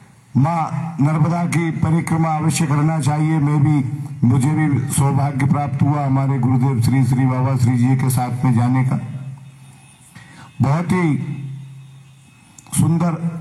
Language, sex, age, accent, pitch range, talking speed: Hindi, male, 50-69, native, 135-170 Hz, 130 wpm